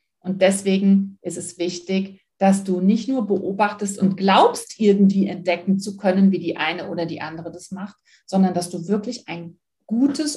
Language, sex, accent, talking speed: German, female, German, 175 wpm